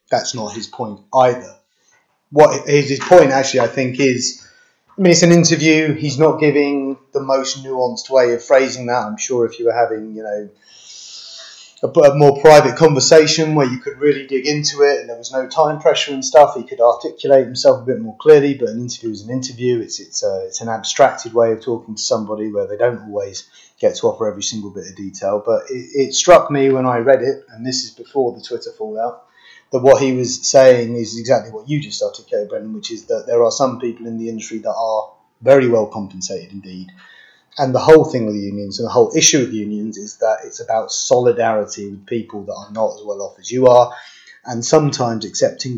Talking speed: 220 wpm